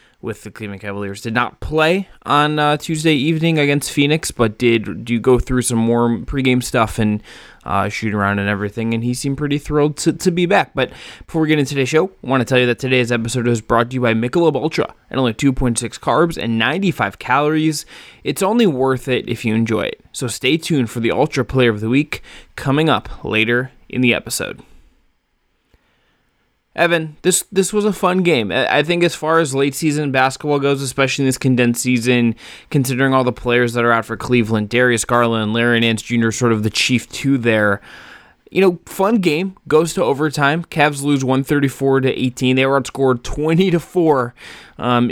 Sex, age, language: male, 20-39, English